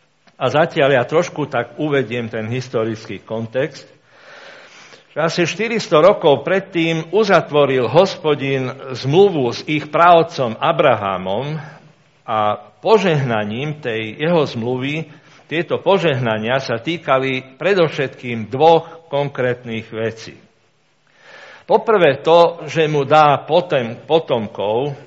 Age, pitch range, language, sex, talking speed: 60-79, 120-165 Hz, Slovak, male, 95 wpm